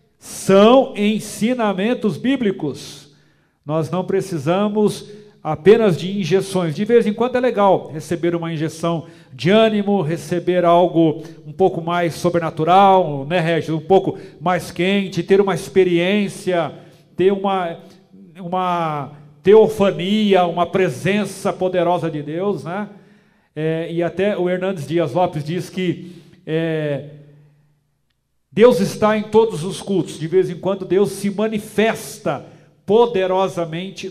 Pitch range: 165-200 Hz